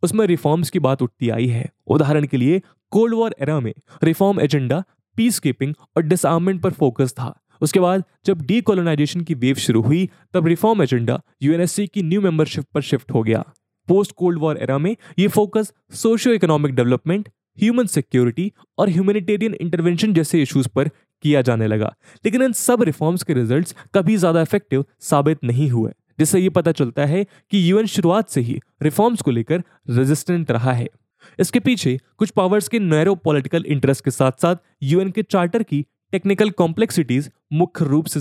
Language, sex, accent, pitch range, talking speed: English, male, Indian, 140-195 Hz, 160 wpm